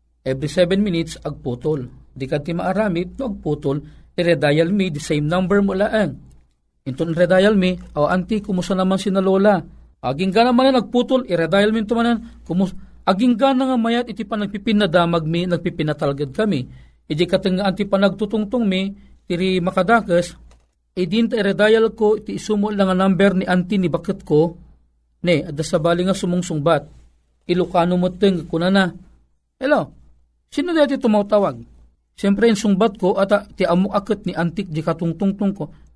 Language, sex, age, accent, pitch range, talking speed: Filipino, male, 40-59, native, 160-210 Hz, 170 wpm